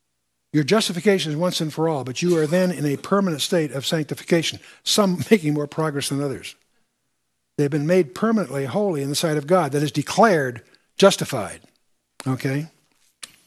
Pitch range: 145-190 Hz